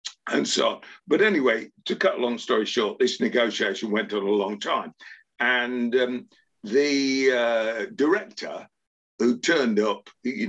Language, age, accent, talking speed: English, 50-69, British, 150 wpm